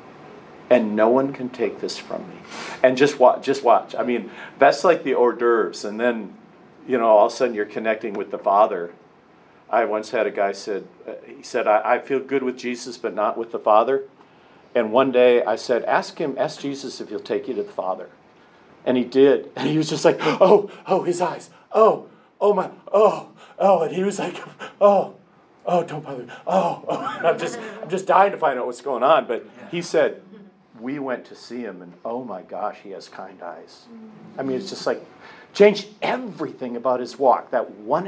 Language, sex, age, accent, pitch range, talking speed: English, male, 40-59, American, 120-180 Hz, 210 wpm